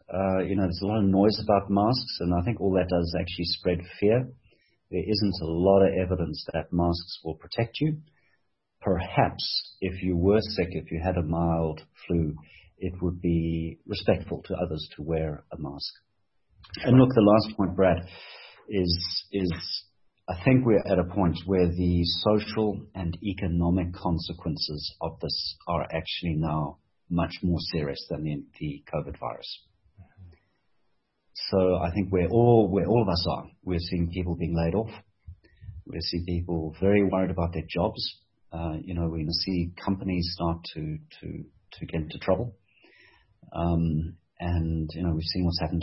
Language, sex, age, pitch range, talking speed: English, male, 50-69, 85-100 Hz, 180 wpm